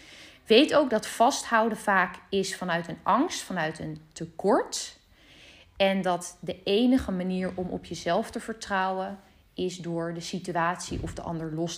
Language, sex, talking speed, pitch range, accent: Dutch, female, 155 wpm, 165-210 Hz, Dutch